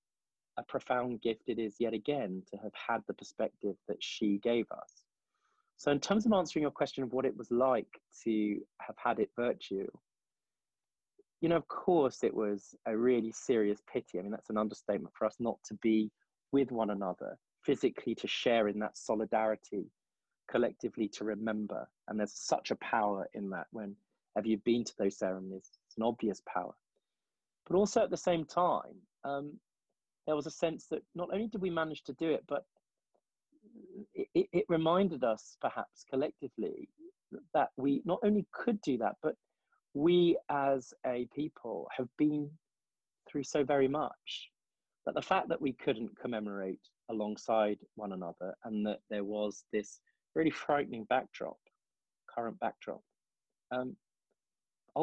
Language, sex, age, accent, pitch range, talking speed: English, male, 20-39, British, 105-155 Hz, 160 wpm